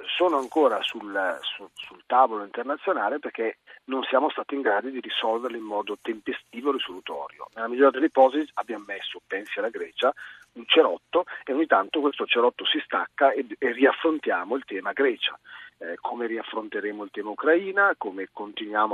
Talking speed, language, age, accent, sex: 165 wpm, Italian, 40-59, native, male